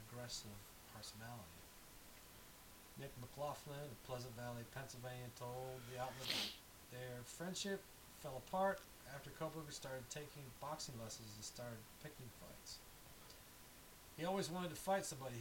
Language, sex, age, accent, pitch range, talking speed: English, male, 40-59, American, 120-155 Hz, 120 wpm